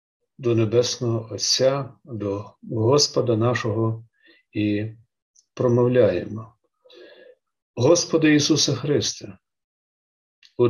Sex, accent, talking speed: male, native, 65 wpm